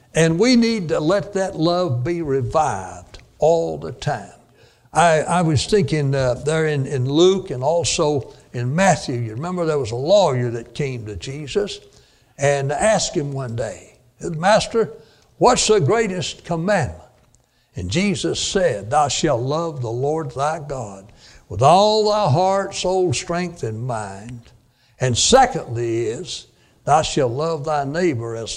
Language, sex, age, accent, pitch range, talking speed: English, male, 60-79, American, 125-185 Hz, 150 wpm